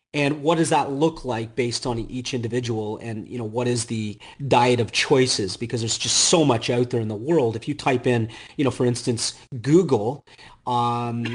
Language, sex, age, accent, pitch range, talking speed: English, male, 40-59, American, 115-140 Hz, 205 wpm